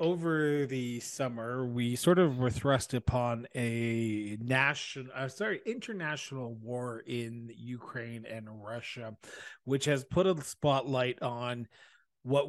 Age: 30-49